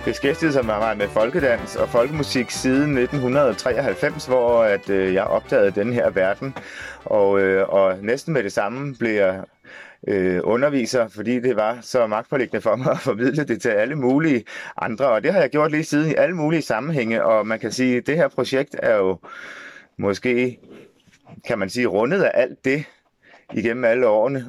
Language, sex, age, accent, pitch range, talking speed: English, male, 30-49, Danish, 100-135 Hz, 185 wpm